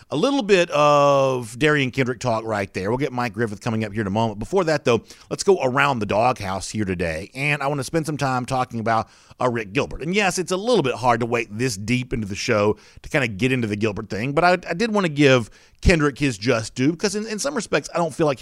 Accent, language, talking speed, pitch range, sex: American, English, 270 wpm, 110-140 Hz, male